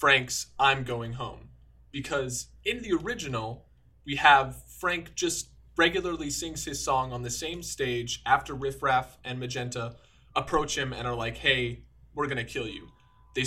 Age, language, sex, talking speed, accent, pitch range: 20-39, English, male, 165 wpm, American, 120-155 Hz